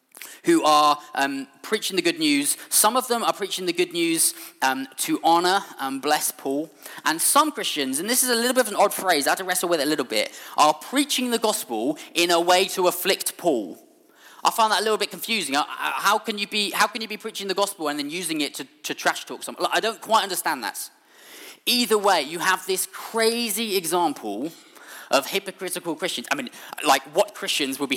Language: English